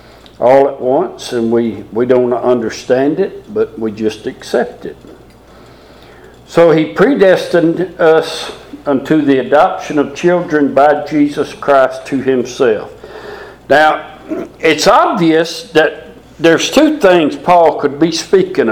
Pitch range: 140-180 Hz